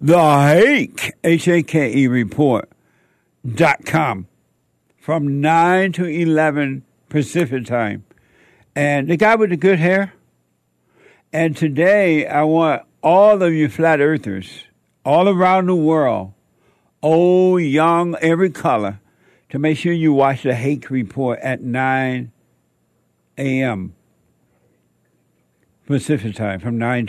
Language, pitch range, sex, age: English, 120-170 Hz, male, 60-79